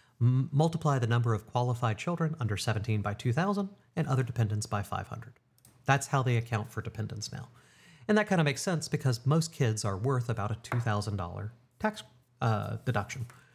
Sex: male